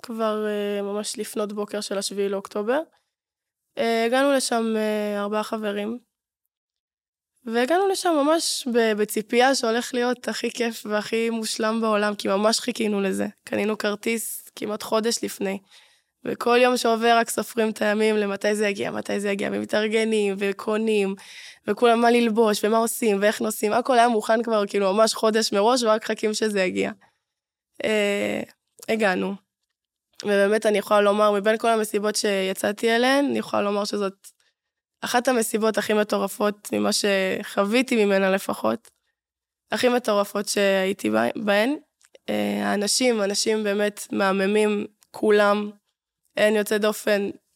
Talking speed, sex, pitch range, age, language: 130 wpm, female, 205-230 Hz, 10-29, Hebrew